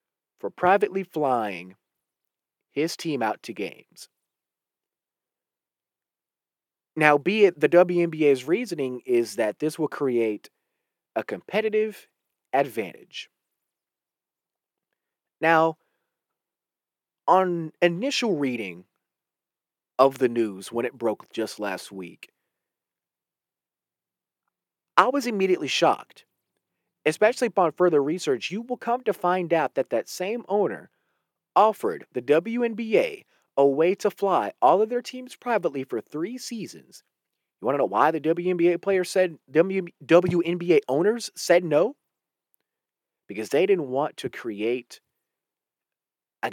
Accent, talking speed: American, 115 wpm